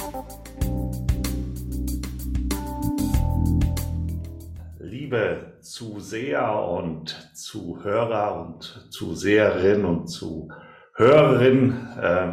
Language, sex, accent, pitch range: German, male, German, 85-135 Hz